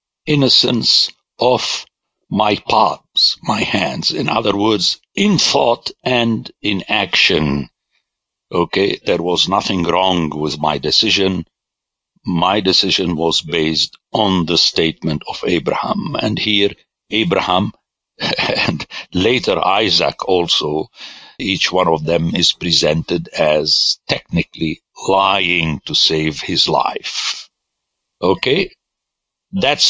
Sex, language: male, English